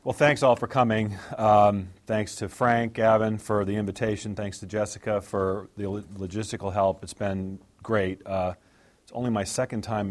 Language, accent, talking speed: English, American, 170 wpm